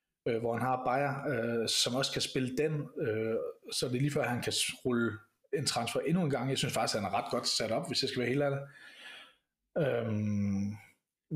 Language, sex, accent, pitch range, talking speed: Danish, male, native, 120-150 Hz, 215 wpm